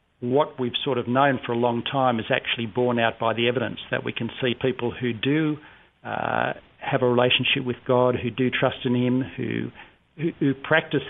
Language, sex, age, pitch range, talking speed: English, male, 50-69, 120-135 Hz, 205 wpm